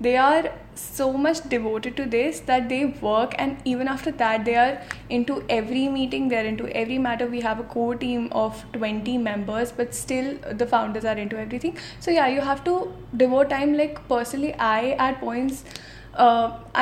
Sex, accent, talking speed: female, native, 185 wpm